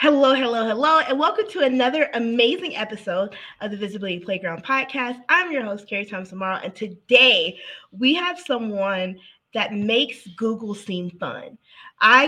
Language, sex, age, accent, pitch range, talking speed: English, female, 20-39, American, 185-240 Hz, 150 wpm